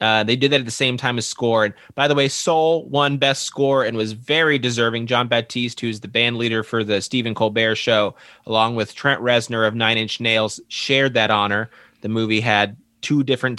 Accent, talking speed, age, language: American, 215 wpm, 30-49, English